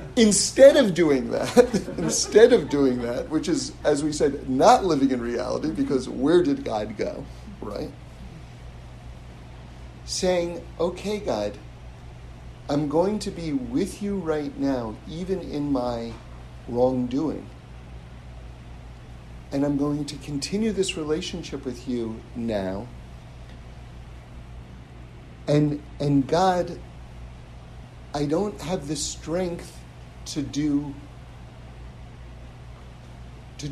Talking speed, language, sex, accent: 105 wpm, English, male, American